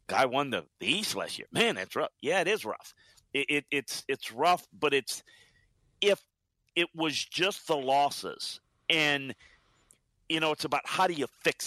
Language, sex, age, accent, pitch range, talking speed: English, male, 50-69, American, 120-160 Hz, 175 wpm